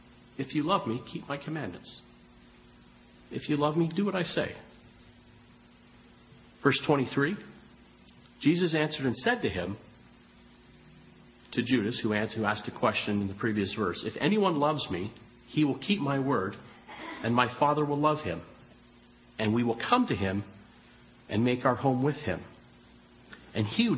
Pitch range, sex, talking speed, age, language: 100-145 Hz, male, 160 wpm, 50-69, English